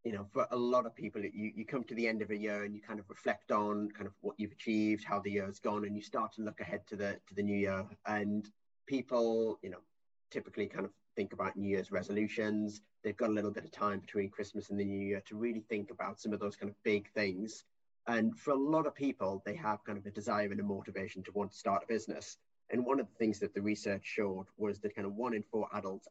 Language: English